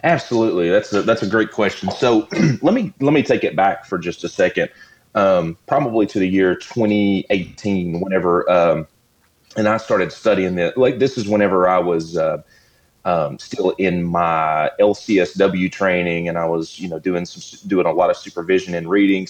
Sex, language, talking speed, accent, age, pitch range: male, English, 185 wpm, American, 30-49, 90-105 Hz